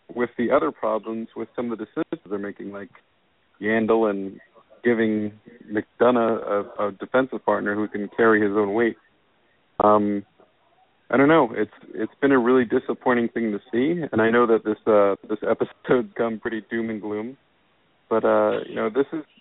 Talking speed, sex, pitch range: 180 wpm, male, 100-115 Hz